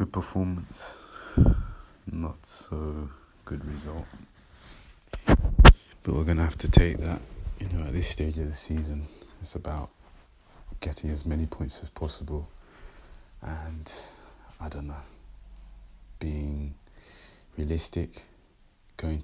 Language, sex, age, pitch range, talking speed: English, male, 30-49, 75-85 Hz, 110 wpm